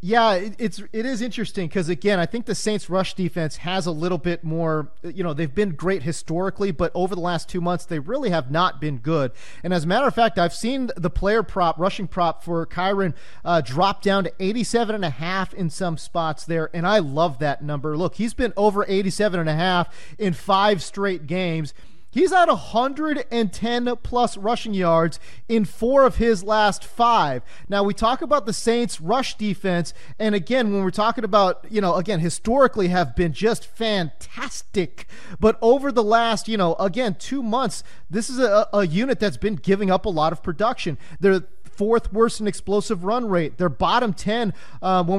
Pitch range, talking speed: 175-225 Hz, 195 wpm